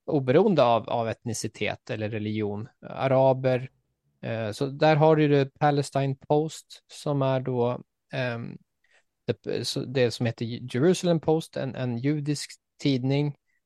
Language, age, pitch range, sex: Swedish, 20-39, 115-140 Hz, male